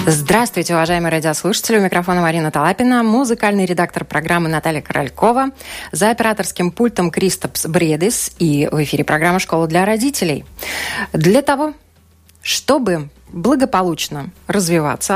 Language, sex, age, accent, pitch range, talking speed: Russian, female, 20-39, native, 160-220 Hz, 115 wpm